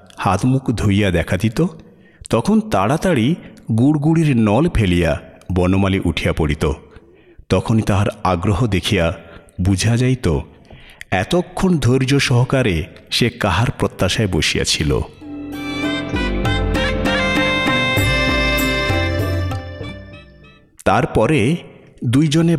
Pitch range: 85-115 Hz